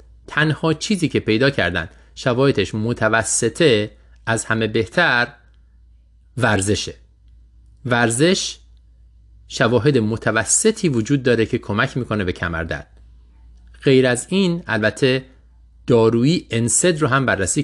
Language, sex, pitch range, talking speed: Persian, male, 85-130 Hz, 105 wpm